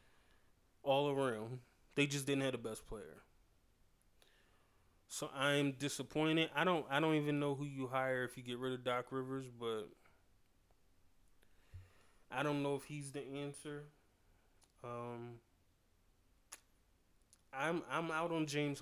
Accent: American